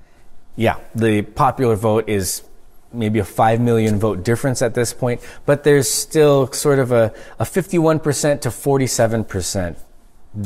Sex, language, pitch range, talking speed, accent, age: male, English, 110-145 Hz, 140 wpm, American, 20-39